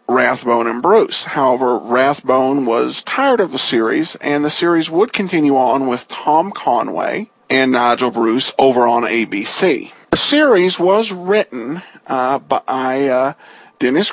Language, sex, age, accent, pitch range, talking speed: English, male, 50-69, American, 140-210 Hz, 140 wpm